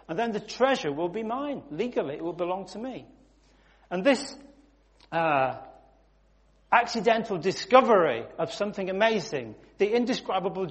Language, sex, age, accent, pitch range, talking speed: English, male, 40-59, British, 175-235 Hz, 130 wpm